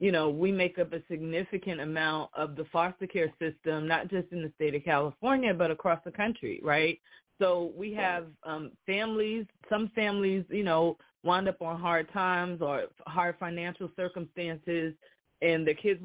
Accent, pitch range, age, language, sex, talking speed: American, 160-195 Hz, 20-39, English, female, 170 wpm